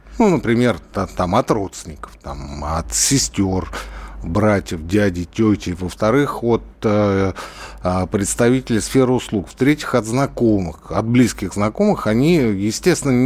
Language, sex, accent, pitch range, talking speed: Russian, male, native, 100-155 Hz, 100 wpm